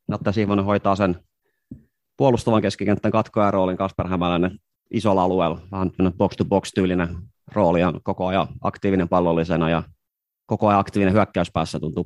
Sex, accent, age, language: male, native, 30-49, Finnish